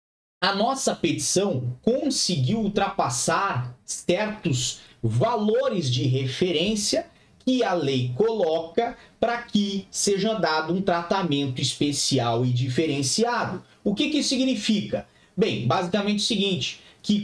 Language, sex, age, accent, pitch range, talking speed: Portuguese, male, 30-49, Brazilian, 135-210 Hz, 110 wpm